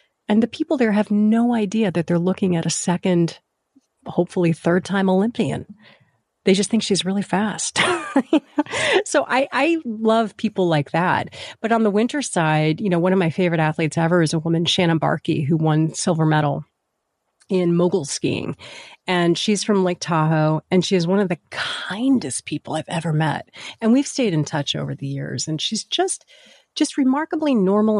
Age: 30-49